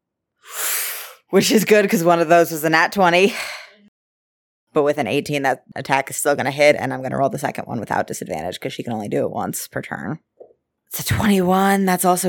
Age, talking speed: 20-39, 215 wpm